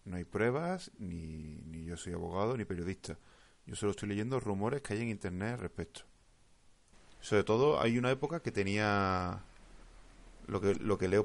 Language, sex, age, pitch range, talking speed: Spanish, male, 30-49, 95-120 Hz, 175 wpm